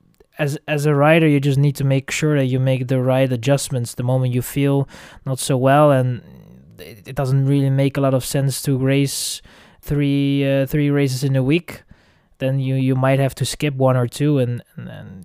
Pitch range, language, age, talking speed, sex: 125-140 Hz, English, 20-39, 215 wpm, male